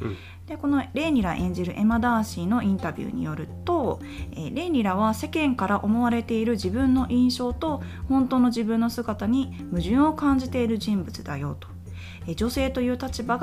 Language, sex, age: Japanese, female, 20-39